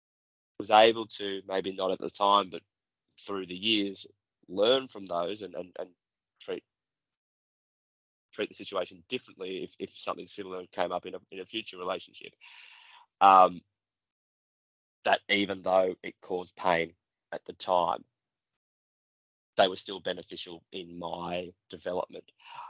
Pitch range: 90-105 Hz